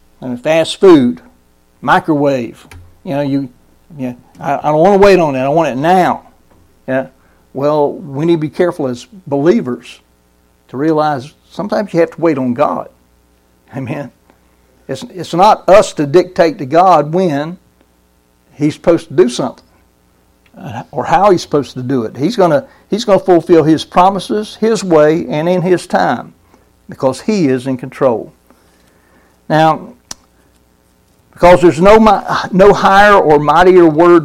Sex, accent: male, American